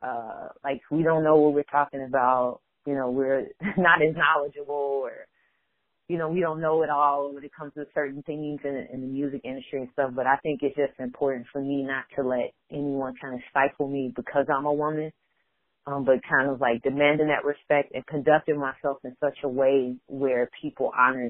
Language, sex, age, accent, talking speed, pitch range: English, female, 30-49, American, 210 wpm, 135-150 Hz